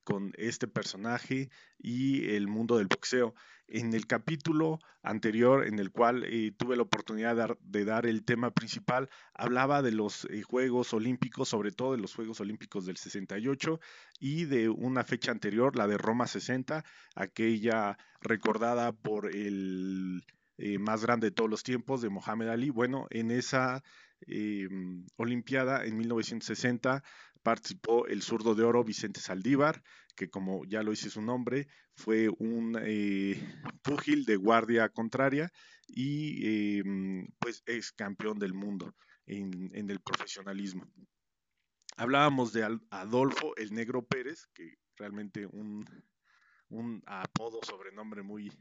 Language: Spanish